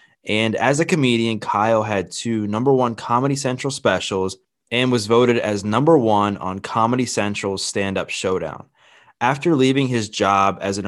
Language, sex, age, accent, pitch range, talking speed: English, male, 20-39, American, 100-130 Hz, 160 wpm